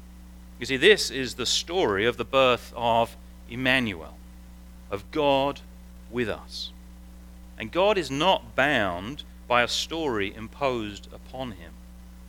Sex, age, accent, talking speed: male, 40-59, British, 125 wpm